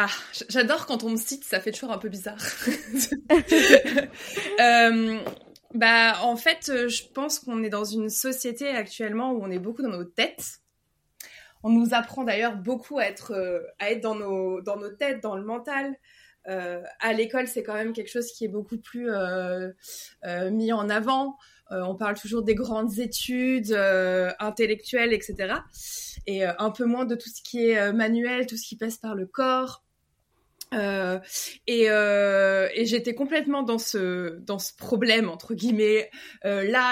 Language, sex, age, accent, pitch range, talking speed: French, female, 20-39, French, 200-245 Hz, 180 wpm